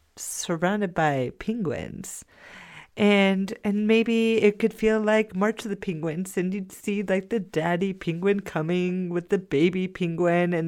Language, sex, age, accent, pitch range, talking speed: English, female, 30-49, American, 160-205 Hz, 150 wpm